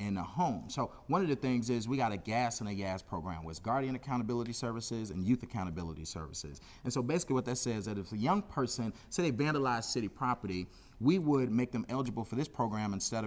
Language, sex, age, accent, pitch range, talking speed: English, male, 30-49, American, 100-125 Hz, 230 wpm